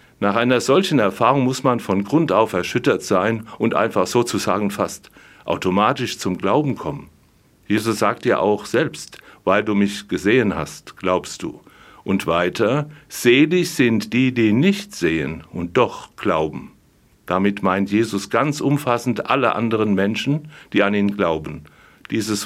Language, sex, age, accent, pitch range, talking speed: German, male, 60-79, German, 100-130 Hz, 145 wpm